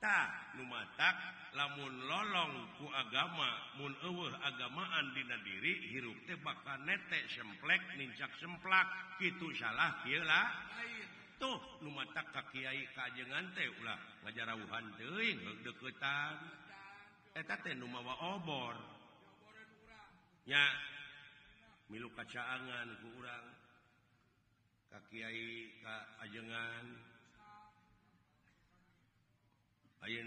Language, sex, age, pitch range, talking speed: Indonesian, male, 50-69, 110-145 Hz, 90 wpm